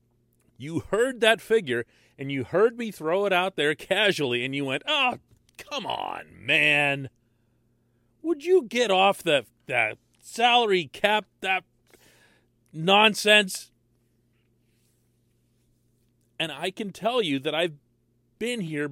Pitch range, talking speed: 120-180 Hz, 125 wpm